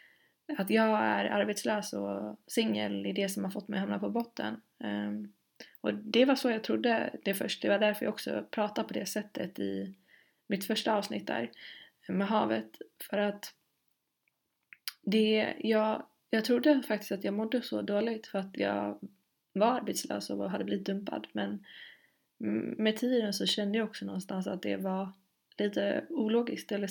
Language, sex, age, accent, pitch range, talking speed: Swedish, female, 20-39, native, 190-220 Hz, 165 wpm